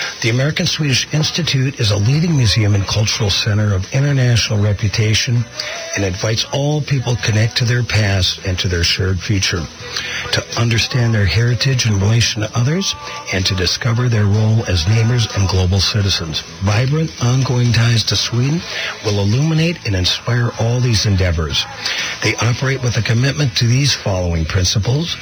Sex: male